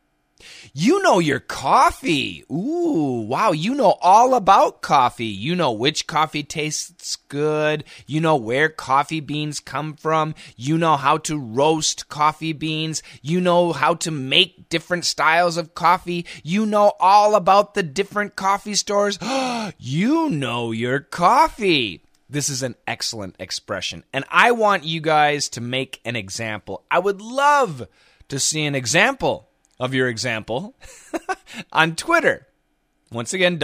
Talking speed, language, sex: 145 wpm, English, male